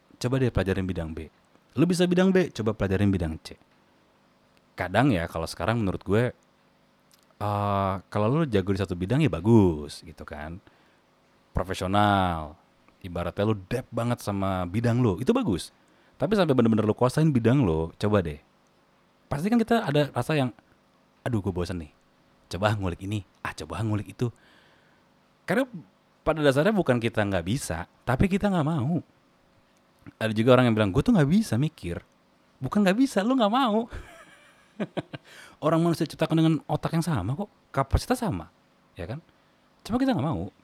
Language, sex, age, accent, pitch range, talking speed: Indonesian, male, 30-49, native, 95-150 Hz, 160 wpm